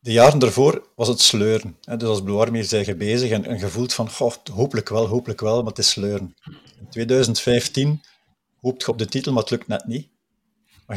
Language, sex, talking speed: Dutch, male, 215 wpm